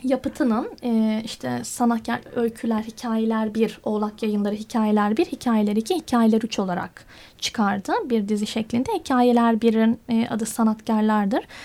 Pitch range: 225-275 Hz